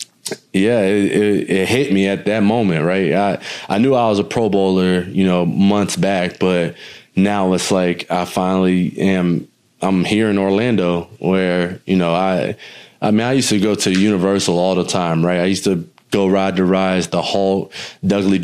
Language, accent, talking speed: English, American, 190 wpm